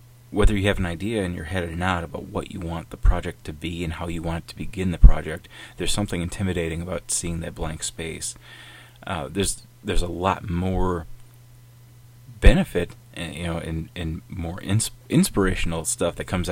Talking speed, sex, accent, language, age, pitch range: 195 wpm, male, American, English, 30-49, 85-120 Hz